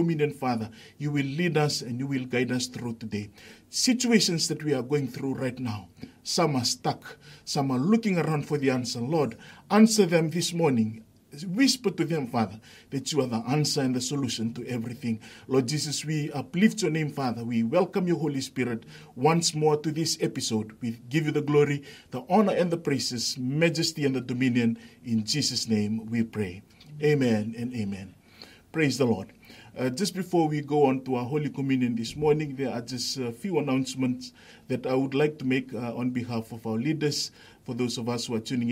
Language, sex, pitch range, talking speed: English, male, 115-145 Hz, 200 wpm